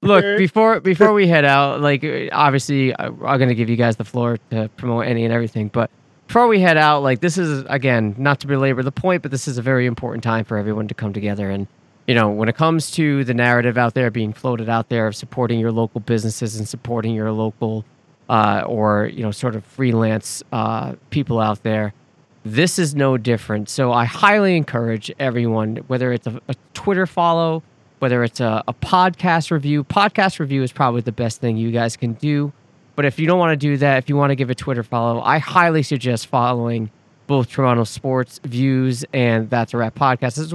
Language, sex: English, male